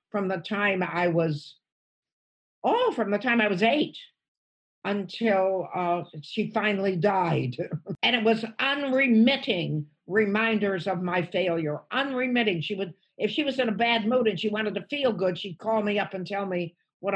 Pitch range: 185-230 Hz